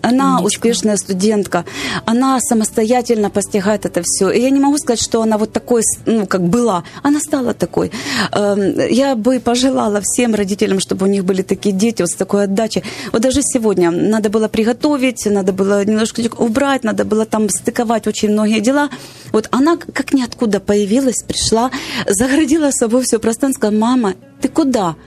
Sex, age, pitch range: female, 30-49, 205-280 Hz